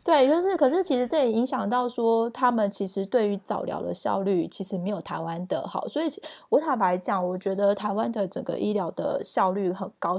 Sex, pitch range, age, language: female, 195-255 Hz, 20-39, Chinese